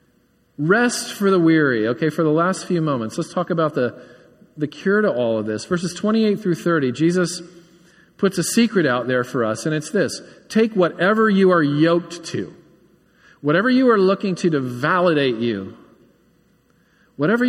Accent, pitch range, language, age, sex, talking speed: American, 130-180 Hz, English, 40-59, male, 170 wpm